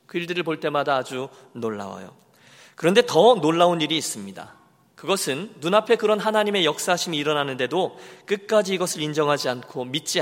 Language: Korean